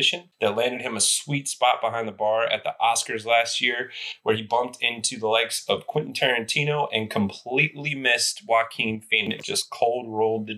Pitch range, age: 110-140 Hz, 30-49